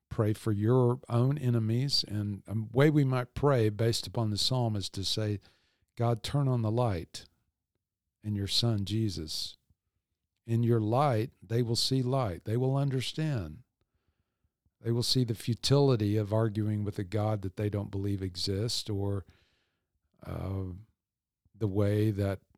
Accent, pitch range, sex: American, 95-115 Hz, male